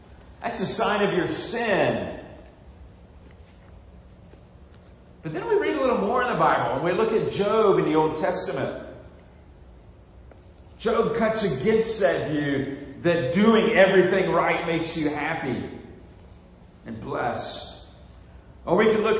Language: English